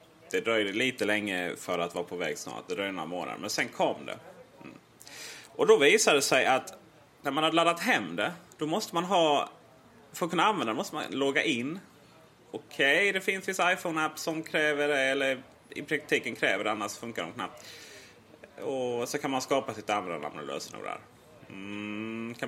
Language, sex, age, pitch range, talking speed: Swedish, male, 30-49, 110-160 Hz, 190 wpm